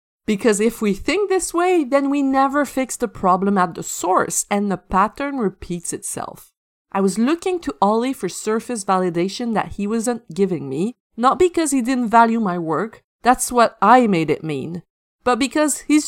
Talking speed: 185 wpm